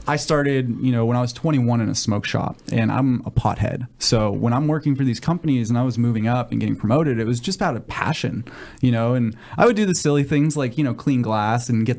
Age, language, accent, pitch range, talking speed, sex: 20-39, English, American, 110-135 Hz, 265 wpm, male